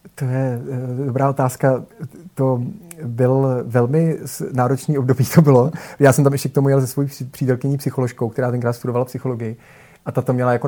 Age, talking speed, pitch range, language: 30-49, 175 wpm, 125-135 Hz, Czech